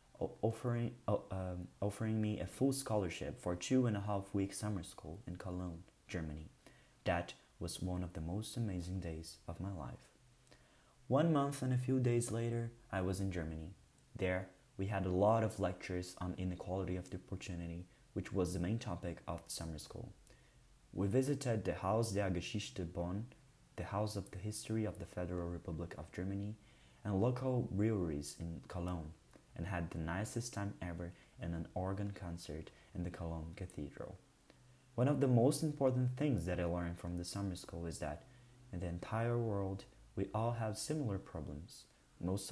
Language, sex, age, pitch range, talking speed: Portuguese, male, 20-39, 90-110 Hz, 170 wpm